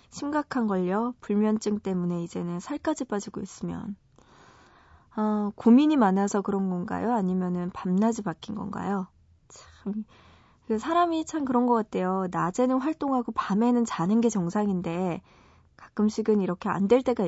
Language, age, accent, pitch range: Korean, 20-39, native, 185-230 Hz